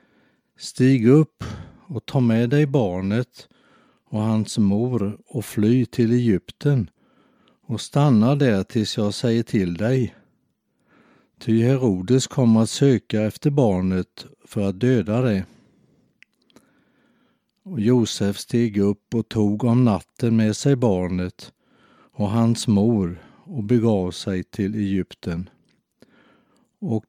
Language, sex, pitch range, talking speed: Swedish, male, 100-125 Hz, 115 wpm